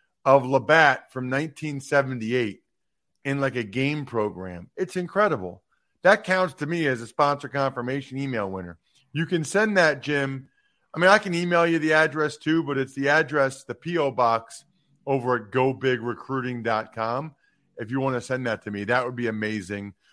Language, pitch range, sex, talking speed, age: English, 130-195 Hz, male, 170 wpm, 40-59